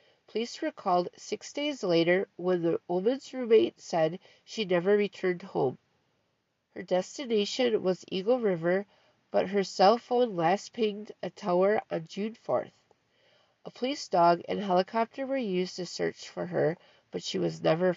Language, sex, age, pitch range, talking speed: English, female, 50-69, 185-245 Hz, 155 wpm